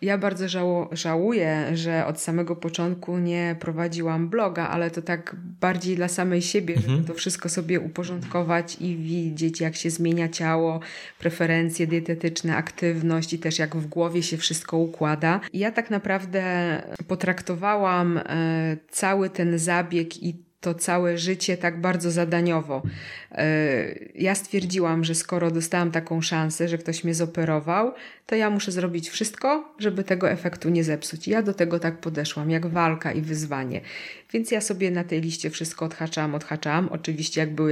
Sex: female